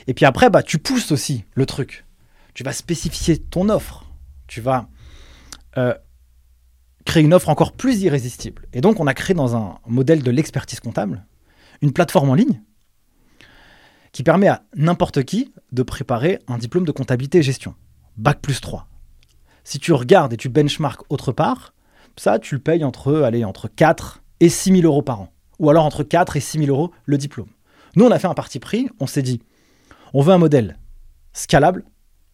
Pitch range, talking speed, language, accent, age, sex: 110-160 Hz, 185 wpm, French, French, 20-39, male